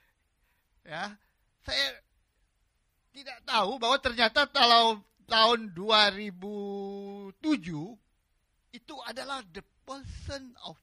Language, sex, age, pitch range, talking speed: English, male, 50-69, 150-210 Hz, 80 wpm